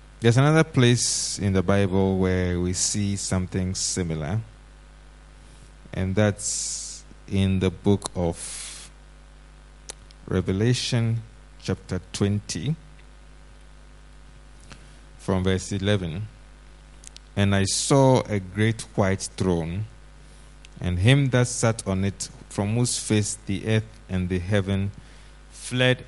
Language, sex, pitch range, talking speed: English, male, 90-115 Hz, 105 wpm